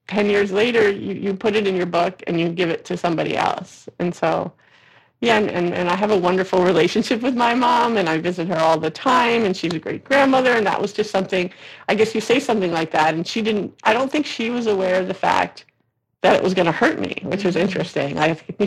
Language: English